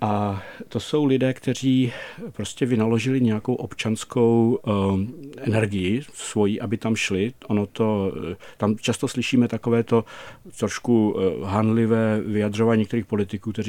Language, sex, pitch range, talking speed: Czech, male, 100-115 Hz, 130 wpm